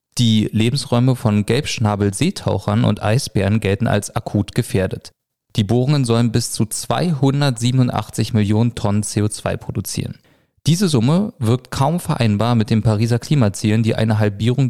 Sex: male